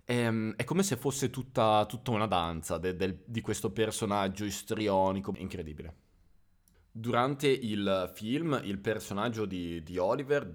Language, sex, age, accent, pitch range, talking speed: Italian, male, 20-39, native, 95-120 Hz, 125 wpm